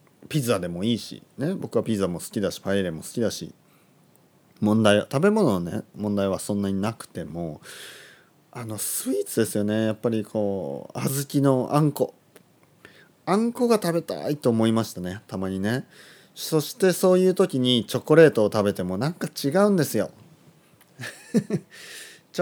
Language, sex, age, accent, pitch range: Japanese, male, 30-49, native, 105-155 Hz